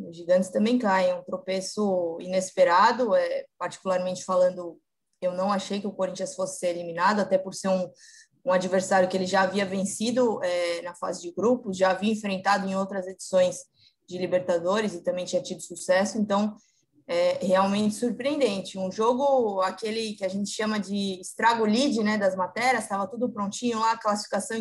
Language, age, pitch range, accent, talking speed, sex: Portuguese, 20-39, 185-225 Hz, Brazilian, 170 wpm, female